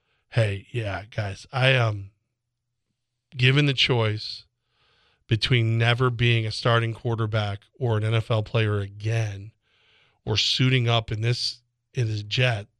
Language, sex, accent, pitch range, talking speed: English, male, American, 115-135 Hz, 130 wpm